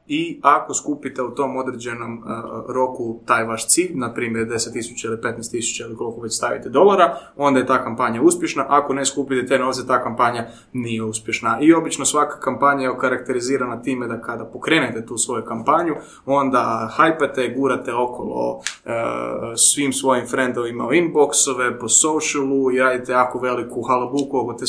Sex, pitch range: male, 120-135 Hz